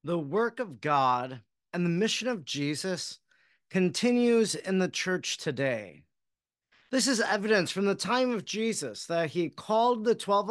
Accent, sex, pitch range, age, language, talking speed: American, male, 155-215 Hz, 40-59, English, 155 wpm